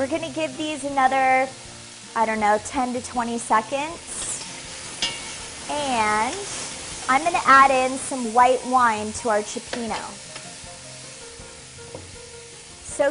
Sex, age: female, 30-49